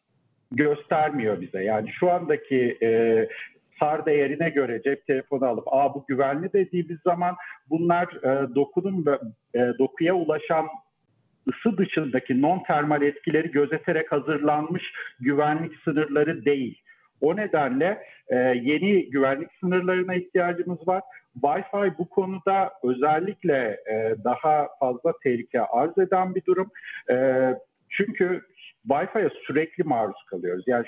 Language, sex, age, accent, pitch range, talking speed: Turkish, male, 50-69, native, 135-180 Hz, 120 wpm